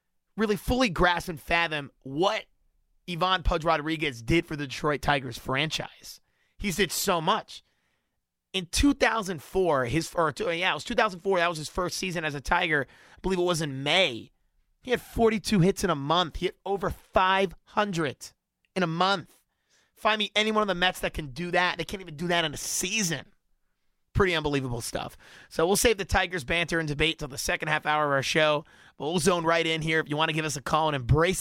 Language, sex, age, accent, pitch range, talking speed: English, male, 30-49, American, 150-185 Hz, 220 wpm